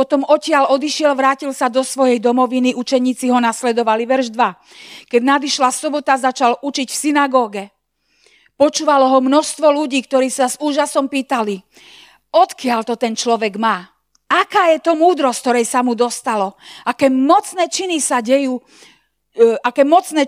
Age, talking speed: 40-59, 150 wpm